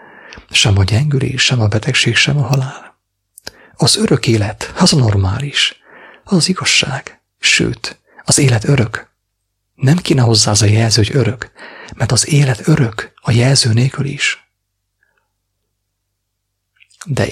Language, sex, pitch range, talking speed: English, male, 100-125 Hz, 130 wpm